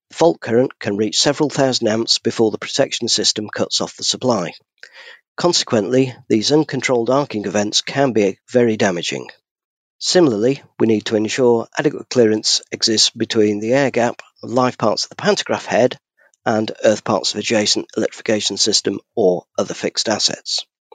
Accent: British